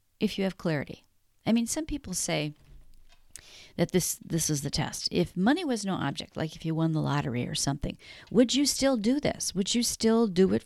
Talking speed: 215 wpm